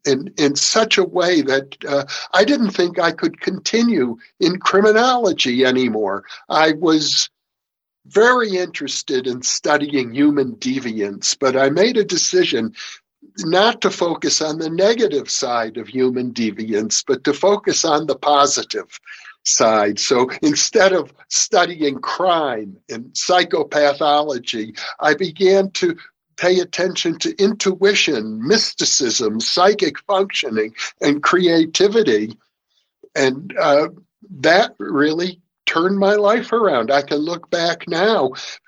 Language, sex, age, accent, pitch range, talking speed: English, male, 60-79, American, 140-195 Hz, 120 wpm